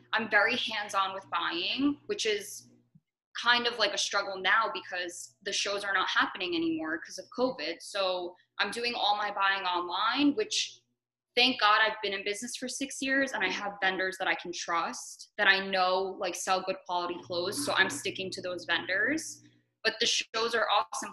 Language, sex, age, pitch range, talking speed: English, female, 20-39, 185-220 Hz, 190 wpm